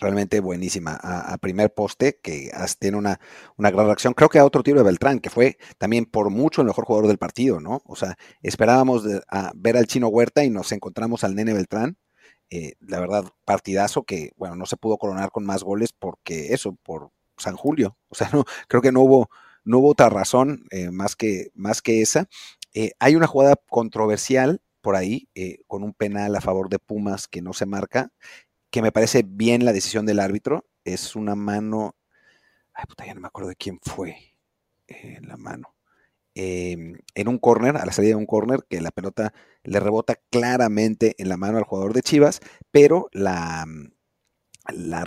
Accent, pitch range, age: Mexican, 100-120 Hz, 40-59